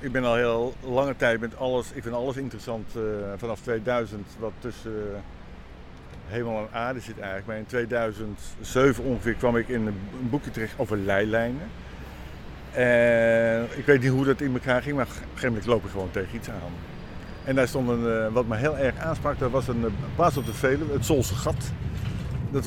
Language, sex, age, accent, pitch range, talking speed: Dutch, male, 50-69, Dutch, 105-125 Hz, 205 wpm